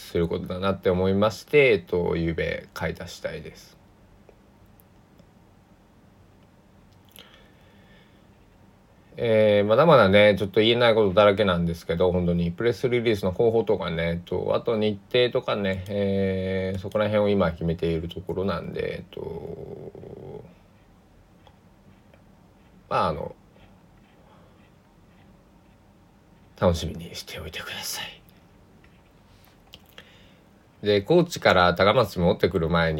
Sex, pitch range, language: male, 90-110 Hz, Japanese